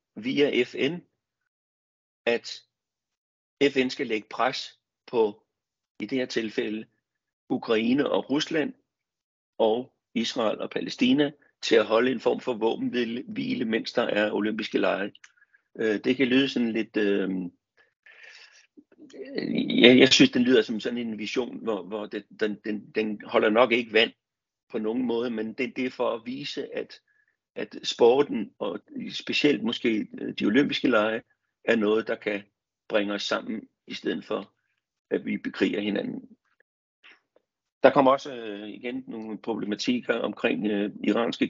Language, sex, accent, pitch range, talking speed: Danish, male, native, 110-145 Hz, 145 wpm